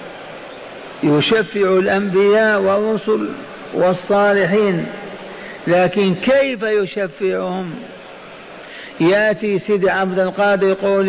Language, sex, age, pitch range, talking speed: Arabic, male, 50-69, 190-215 Hz, 65 wpm